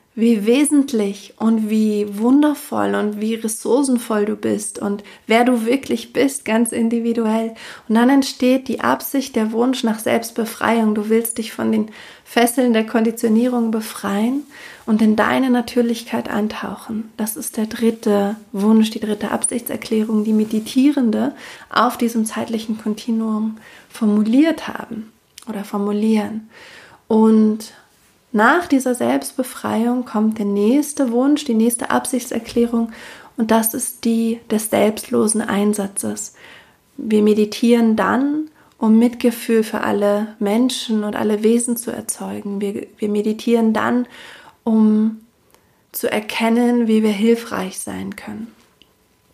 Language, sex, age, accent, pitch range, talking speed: German, female, 30-49, German, 215-240 Hz, 125 wpm